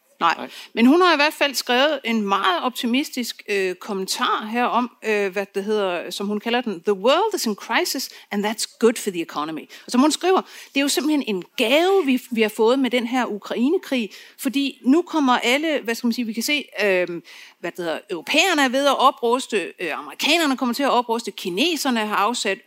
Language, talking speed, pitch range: Danish, 215 wpm, 220-285 Hz